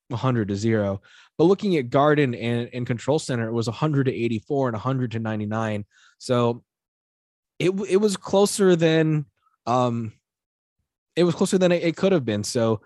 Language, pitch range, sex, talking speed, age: English, 115-150 Hz, male, 175 wpm, 20-39